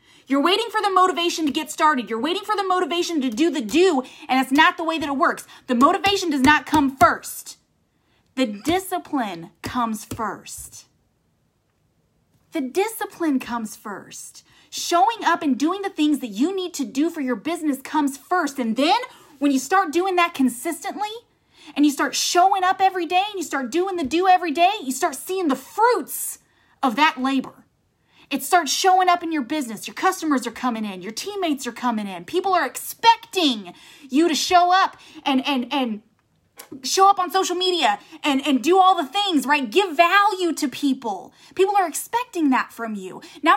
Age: 30-49